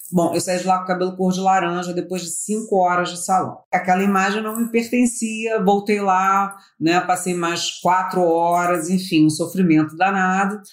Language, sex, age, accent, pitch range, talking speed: Portuguese, female, 40-59, Brazilian, 170-220 Hz, 185 wpm